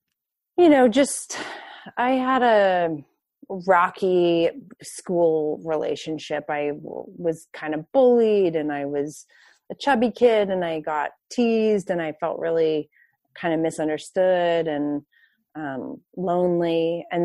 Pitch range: 165-215 Hz